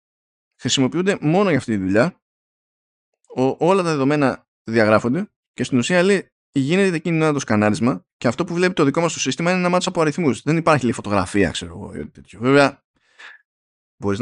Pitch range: 110-160 Hz